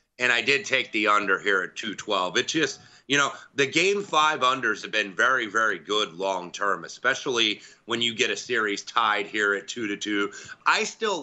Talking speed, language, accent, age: 205 wpm, English, American, 30-49